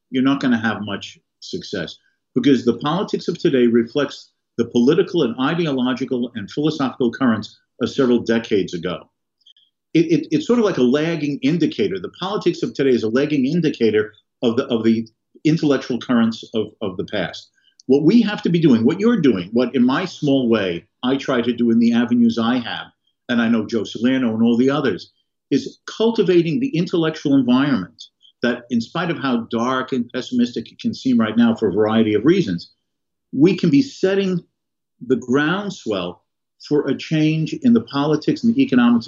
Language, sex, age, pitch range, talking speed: English, male, 50-69, 120-175 Hz, 185 wpm